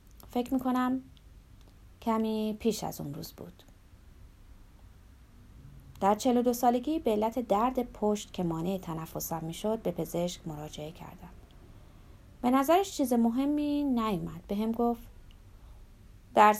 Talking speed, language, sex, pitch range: 120 wpm, Persian, female, 165-255 Hz